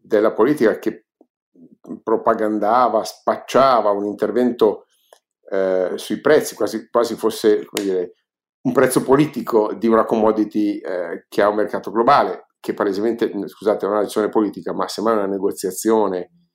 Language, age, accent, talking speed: Italian, 50-69, native, 140 wpm